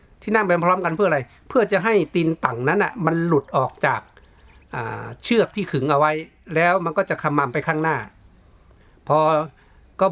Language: Thai